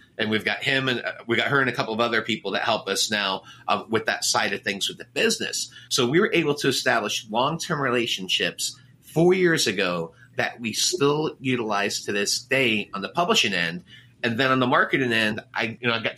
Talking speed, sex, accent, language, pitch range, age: 225 wpm, male, American, English, 110-130 Hz, 30-49